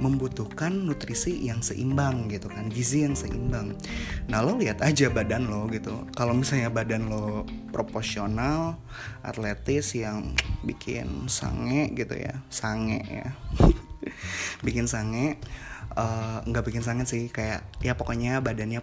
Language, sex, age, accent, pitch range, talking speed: Indonesian, male, 20-39, native, 105-120 Hz, 125 wpm